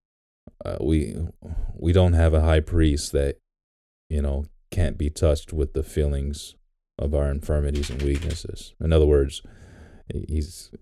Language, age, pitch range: English, 30-49, 70-85 Hz